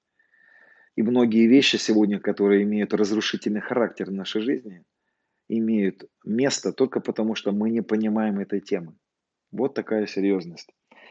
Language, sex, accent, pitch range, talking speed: Russian, male, native, 105-130 Hz, 130 wpm